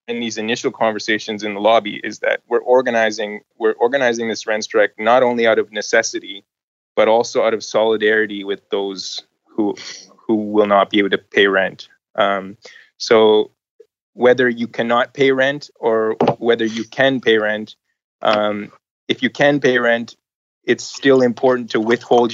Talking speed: 165 wpm